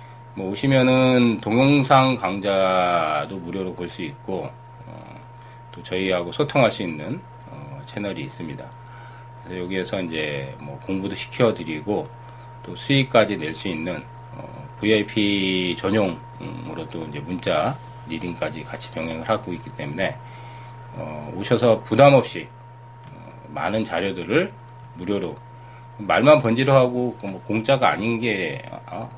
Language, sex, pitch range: Korean, male, 100-115 Hz